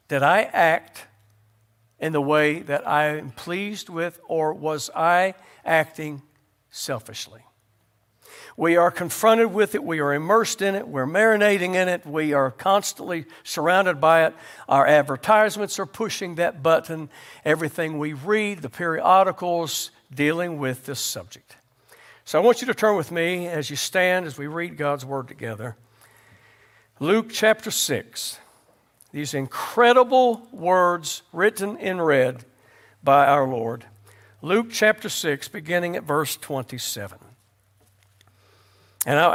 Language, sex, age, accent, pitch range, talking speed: English, male, 60-79, American, 130-185 Hz, 135 wpm